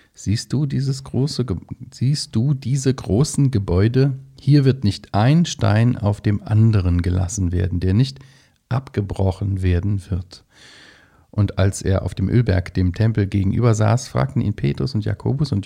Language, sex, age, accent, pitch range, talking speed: German, male, 40-59, German, 95-130 Hz, 155 wpm